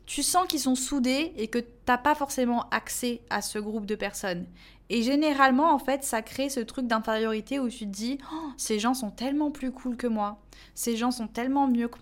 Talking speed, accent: 225 wpm, French